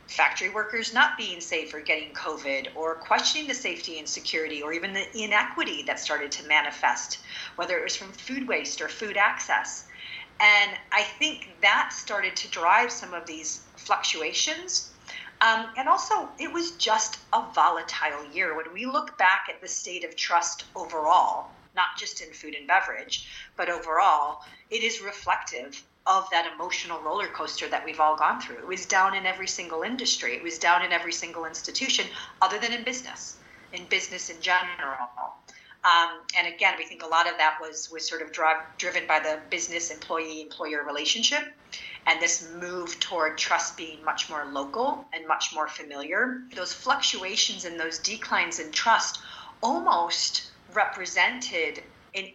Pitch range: 160-245 Hz